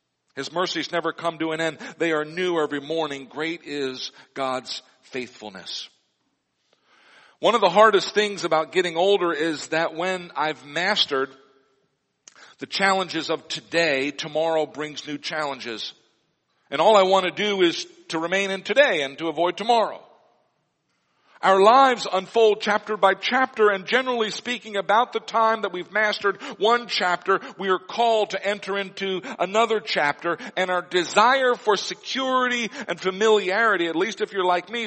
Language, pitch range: English, 155-215 Hz